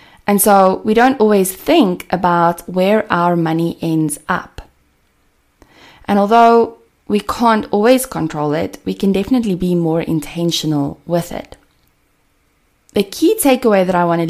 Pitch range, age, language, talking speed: 170-215 Hz, 20-39, English, 145 wpm